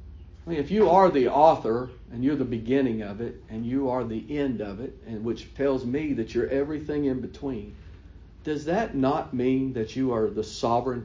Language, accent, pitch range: English, American, 125-205 Hz